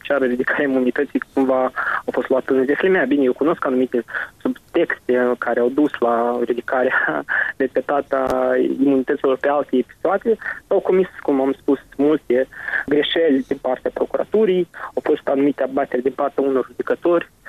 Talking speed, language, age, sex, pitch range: 150 wpm, Romanian, 20-39, male, 130-160 Hz